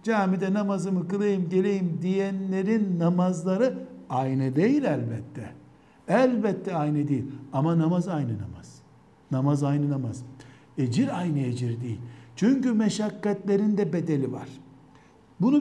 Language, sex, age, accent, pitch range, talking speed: Turkish, male, 60-79, native, 140-190 Hz, 110 wpm